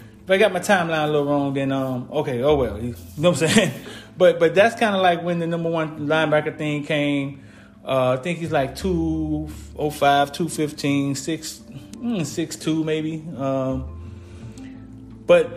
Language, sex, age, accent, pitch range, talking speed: English, male, 30-49, American, 125-165 Hz, 185 wpm